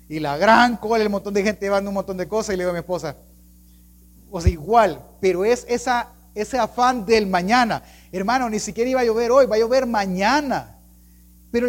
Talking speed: 215 wpm